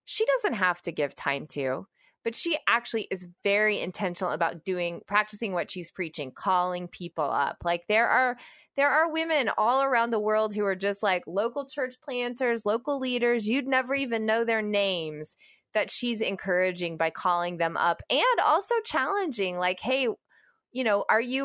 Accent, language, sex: American, English, female